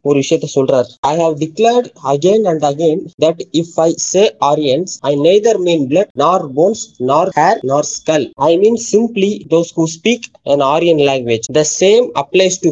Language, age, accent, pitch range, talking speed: Tamil, 20-39, native, 155-215 Hz, 185 wpm